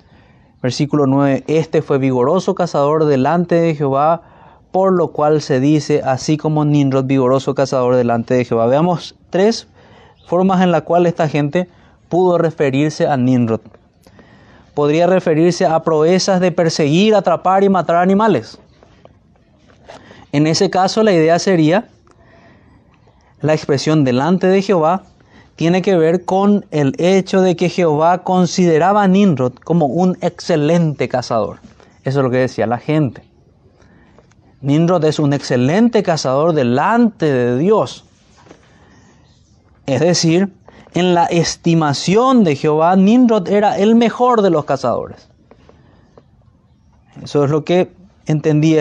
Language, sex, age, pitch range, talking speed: Spanish, male, 20-39, 140-185 Hz, 130 wpm